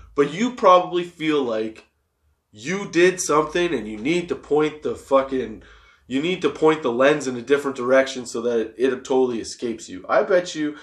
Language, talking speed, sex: English, 195 wpm, male